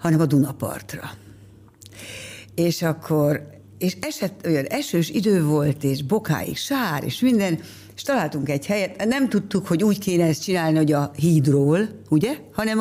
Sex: female